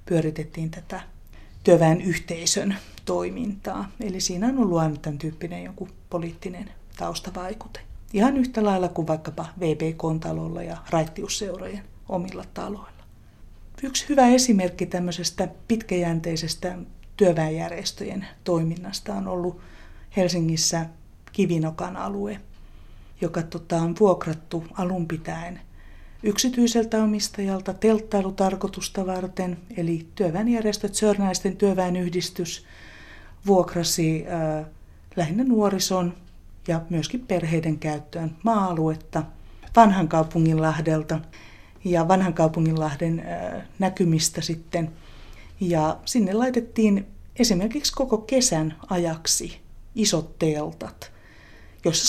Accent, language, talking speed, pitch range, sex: native, Finnish, 90 wpm, 160-200 Hz, female